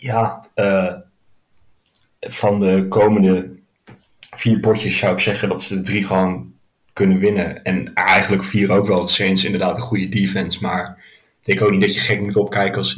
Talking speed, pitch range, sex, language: 185 wpm, 100-115 Hz, male, Dutch